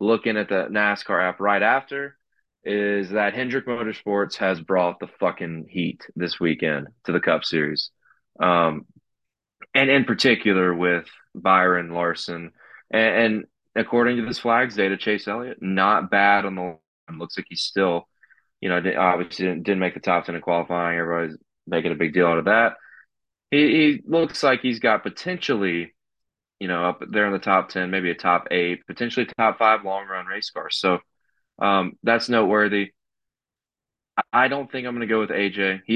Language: English